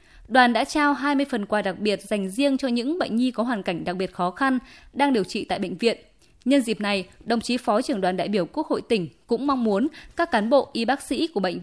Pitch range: 195-275 Hz